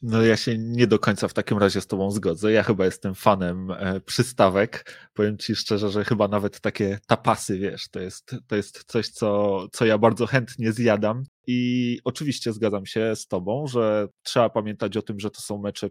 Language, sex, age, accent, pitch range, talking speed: Polish, male, 20-39, native, 105-120 Hz, 190 wpm